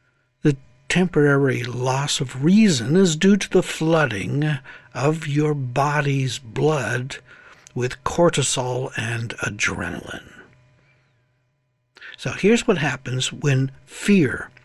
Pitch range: 130-170 Hz